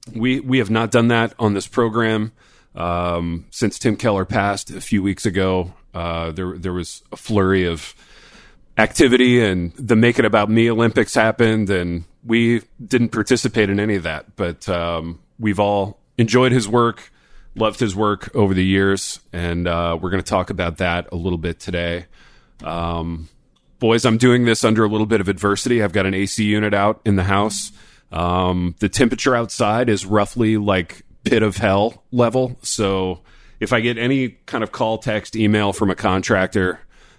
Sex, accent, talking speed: male, American, 180 wpm